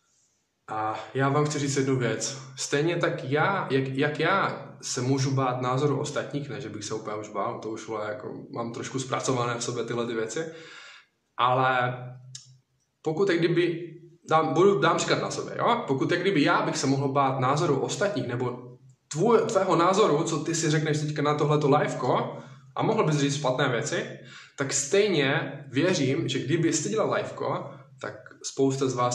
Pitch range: 125-150 Hz